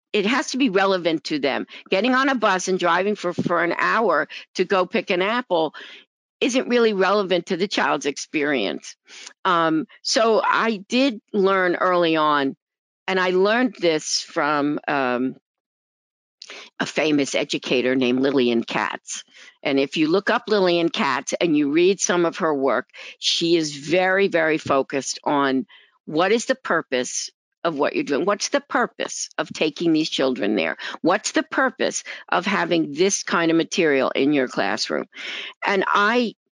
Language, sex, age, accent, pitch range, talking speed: English, female, 50-69, American, 155-205 Hz, 160 wpm